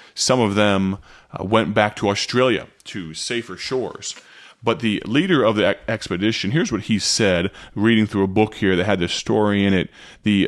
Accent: American